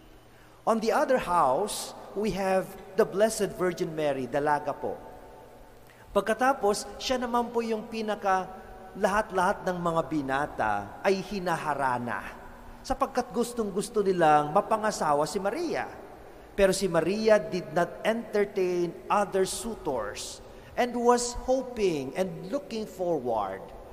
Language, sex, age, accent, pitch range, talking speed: English, male, 40-59, Filipino, 155-210 Hz, 110 wpm